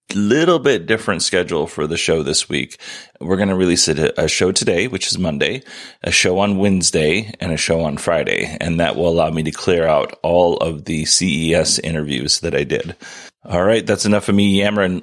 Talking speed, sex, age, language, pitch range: 205 wpm, male, 30-49, English, 85-105 Hz